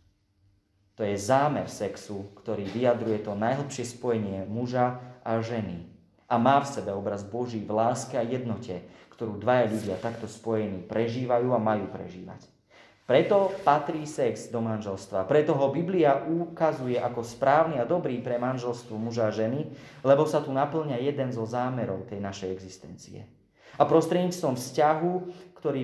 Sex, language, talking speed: male, Slovak, 145 wpm